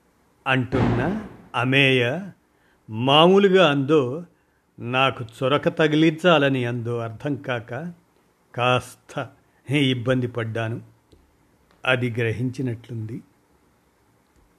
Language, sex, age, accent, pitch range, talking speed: Telugu, male, 50-69, native, 115-145 Hz, 60 wpm